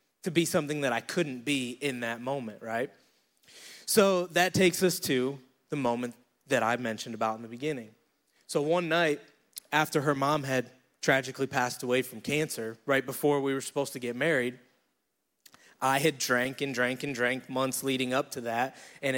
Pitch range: 125-155 Hz